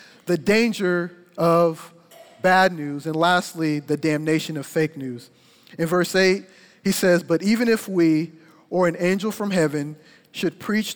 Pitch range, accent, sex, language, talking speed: 165-220 Hz, American, male, English, 155 wpm